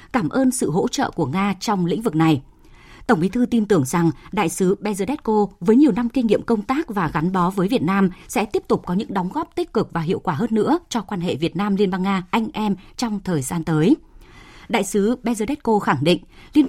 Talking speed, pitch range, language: 235 wpm, 175-230 Hz, Vietnamese